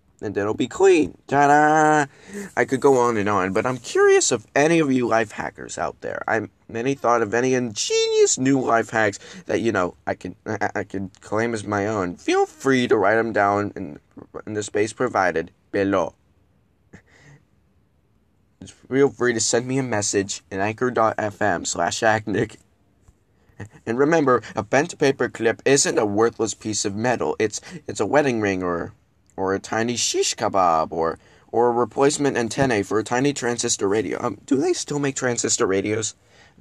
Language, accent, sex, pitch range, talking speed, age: English, American, male, 100-135 Hz, 175 wpm, 20-39